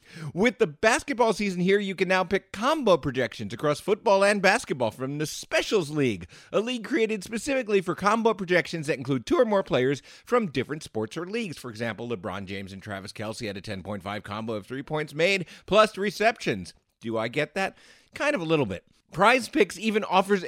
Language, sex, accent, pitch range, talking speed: English, male, American, 135-215 Hz, 195 wpm